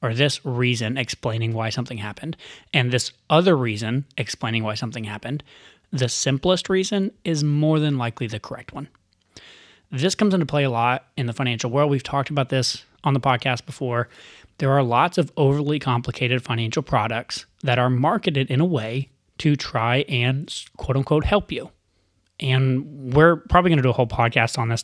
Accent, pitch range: American, 120-145 Hz